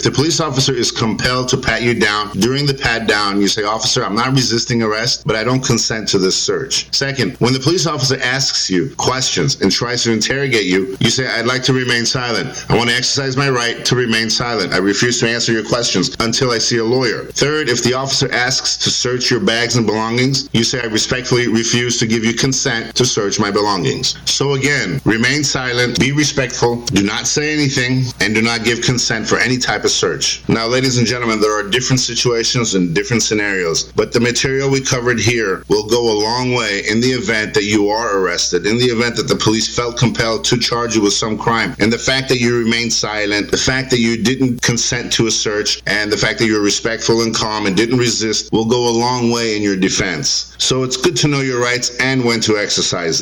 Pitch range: 110-130 Hz